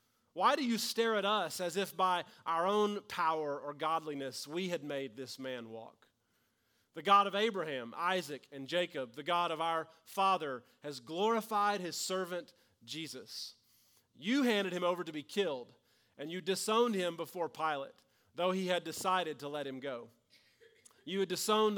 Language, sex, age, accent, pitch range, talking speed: English, male, 40-59, American, 145-200 Hz, 170 wpm